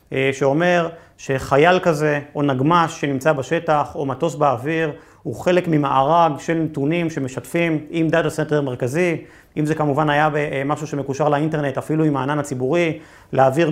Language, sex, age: Hebrew, male, 30-49